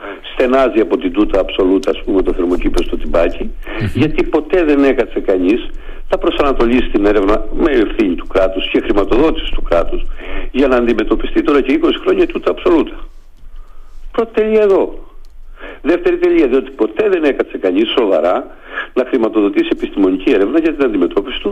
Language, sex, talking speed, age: Greek, male, 155 wpm, 60-79